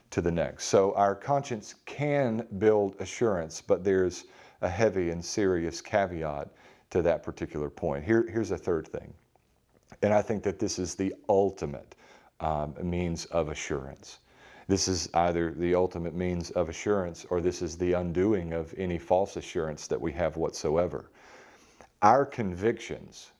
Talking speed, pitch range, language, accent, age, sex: 150 wpm, 85-105 Hz, English, American, 40-59, male